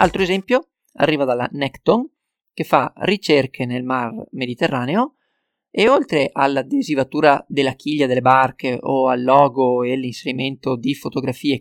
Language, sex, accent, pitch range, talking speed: Italian, male, native, 130-160 Hz, 130 wpm